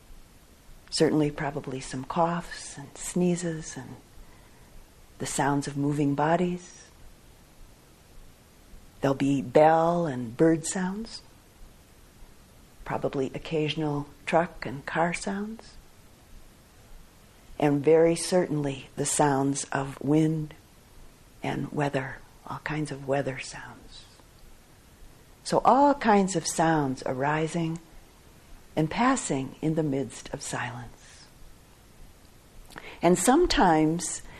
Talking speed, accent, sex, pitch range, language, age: 90 wpm, American, female, 140-175 Hz, English, 50-69